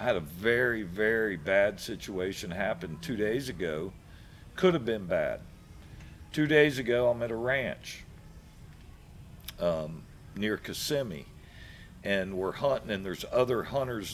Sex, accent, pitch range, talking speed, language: male, American, 95-125 Hz, 135 wpm, English